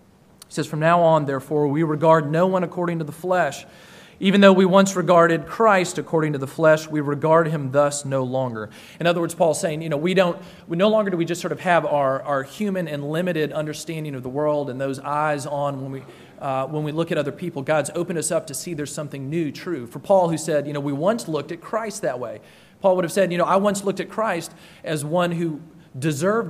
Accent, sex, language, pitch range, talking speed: American, male, English, 145-180 Hz, 240 wpm